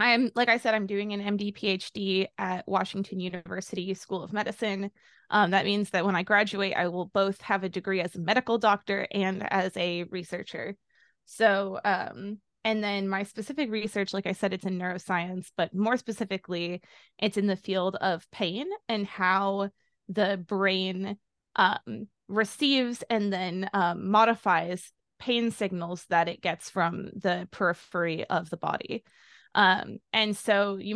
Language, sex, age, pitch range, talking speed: English, female, 20-39, 185-220 Hz, 160 wpm